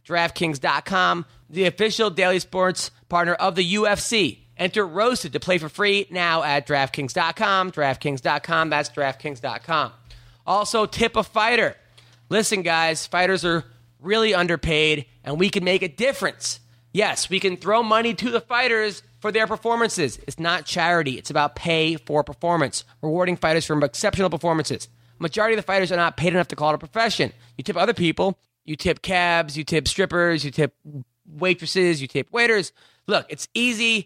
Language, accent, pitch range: English, American, 145-195 Hz